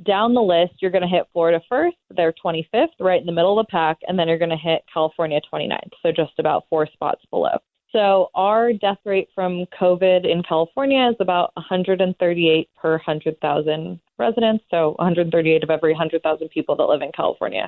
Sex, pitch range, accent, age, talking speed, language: female, 160-195 Hz, American, 20-39, 195 wpm, English